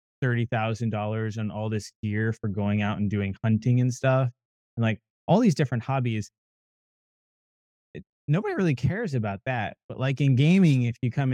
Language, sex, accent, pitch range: English, male, American, 105-125 Hz